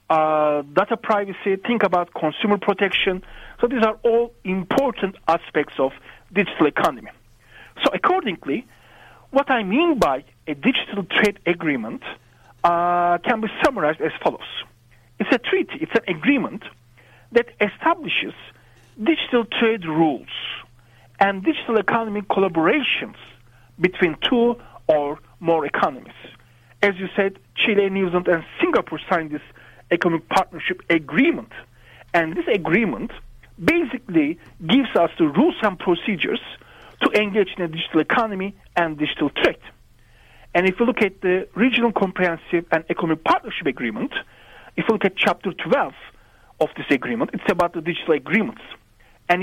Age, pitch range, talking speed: 50-69, 170-230 Hz, 135 wpm